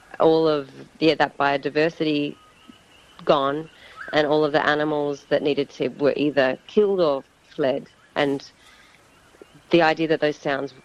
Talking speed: 140 wpm